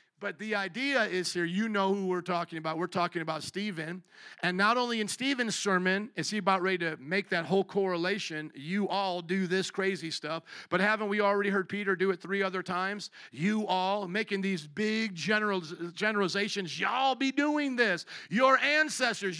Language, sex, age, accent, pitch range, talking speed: English, male, 50-69, American, 170-225 Hz, 185 wpm